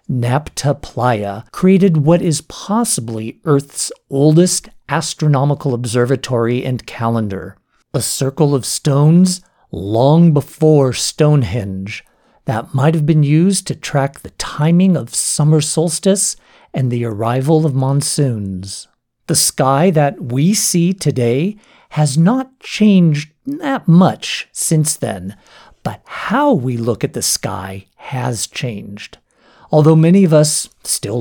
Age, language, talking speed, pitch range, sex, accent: 50-69, English, 120 wpm, 125-160 Hz, male, American